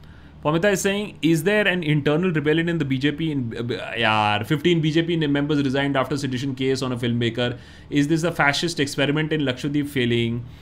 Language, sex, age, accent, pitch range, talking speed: Hindi, male, 30-49, native, 120-180 Hz, 165 wpm